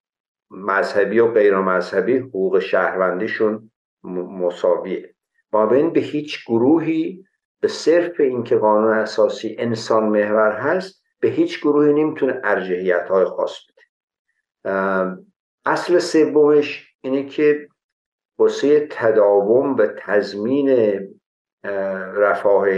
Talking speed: 95 wpm